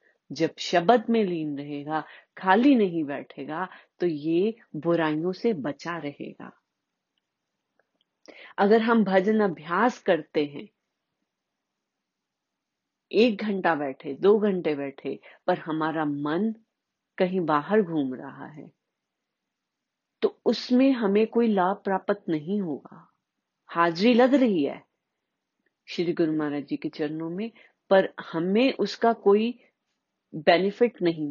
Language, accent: Hindi, native